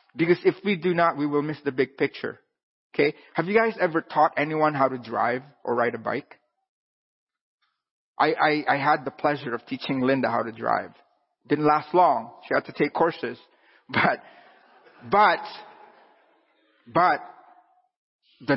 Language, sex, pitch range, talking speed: English, male, 145-200 Hz, 160 wpm